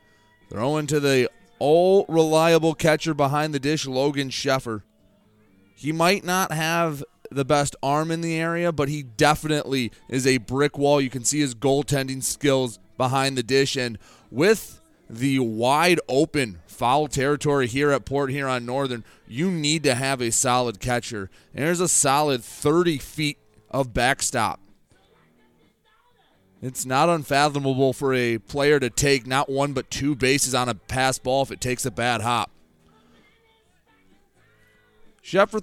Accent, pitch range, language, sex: American, 110-150 Hz, English, male